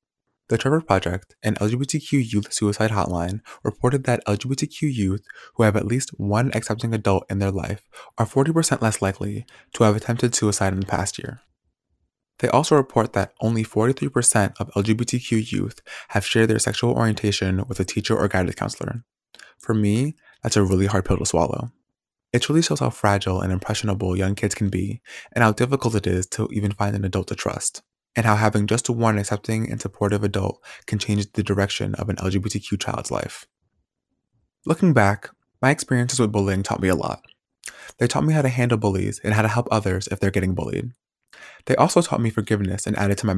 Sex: male